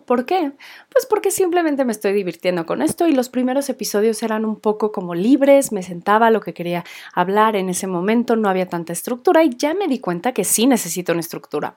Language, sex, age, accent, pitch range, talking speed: Spanish, female, 30-49, Mexican, 190-265 Hz, 220 wpm